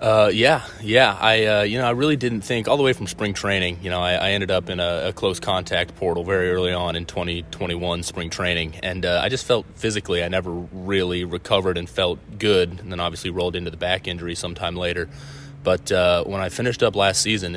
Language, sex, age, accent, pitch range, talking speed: English, male, 20-39, American, 85-100 Hz, 230 wpm